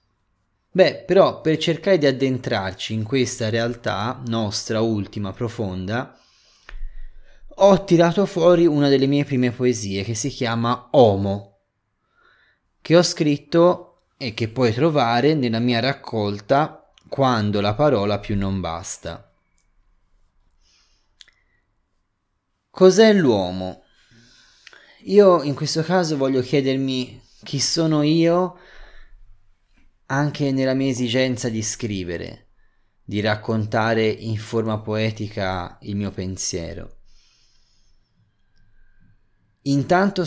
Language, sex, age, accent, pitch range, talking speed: Italian, male, 20-39, native, 100-130 Hz, 100 wpm